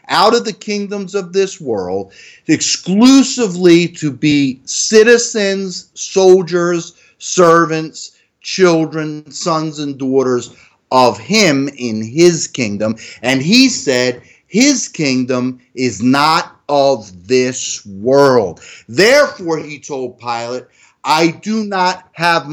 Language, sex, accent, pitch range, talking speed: English, male, American, 130-200 Hz, 105 wpm